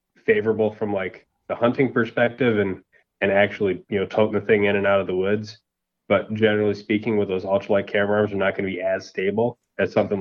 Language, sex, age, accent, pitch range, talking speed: English, male, 20-39, American, 95-110 Hz, 220 wpm